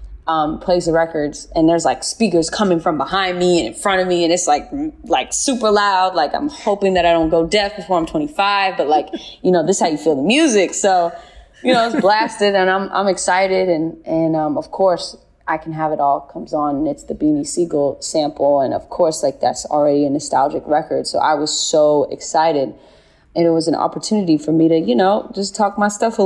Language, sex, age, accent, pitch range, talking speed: English, female, 20-39, American, 155-190 Hz, 235 wpm